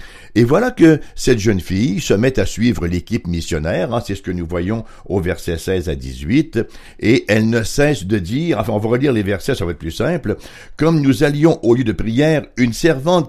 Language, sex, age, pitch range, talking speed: English, male, 60-79, 90-130 Hz, 220 wpm